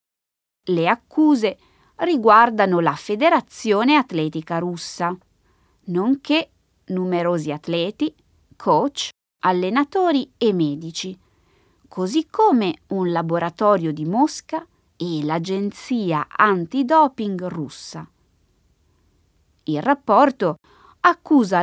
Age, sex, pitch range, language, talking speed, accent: 20-39, female, 170-270 Hz, Italian, 75 wpm, native